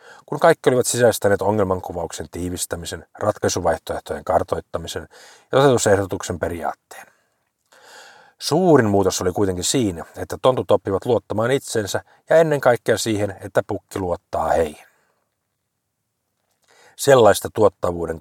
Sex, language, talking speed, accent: male, Finnish, 100 wpm, native